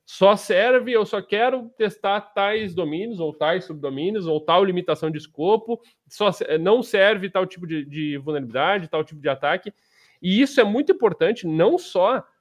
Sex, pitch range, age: male, 155-230 Hz, 20-39